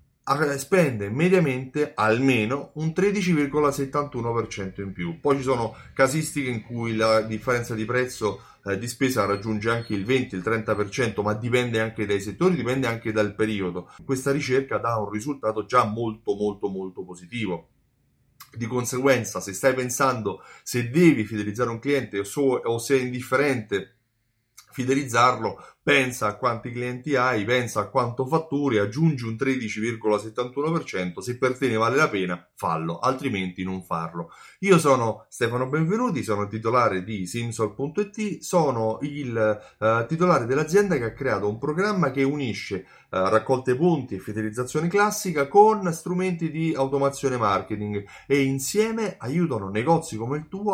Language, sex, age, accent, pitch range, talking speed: Italian, male, 30-49, native, 110-145 Hz, 140 wpm